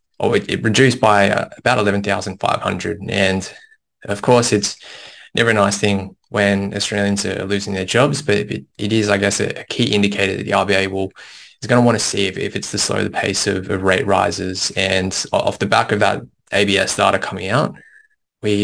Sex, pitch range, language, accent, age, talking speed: male, 100-110 Hz, English, Australian, 20-39, 205 wpm